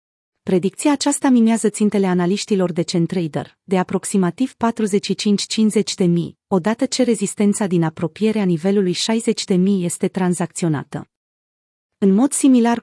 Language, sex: Romanian, female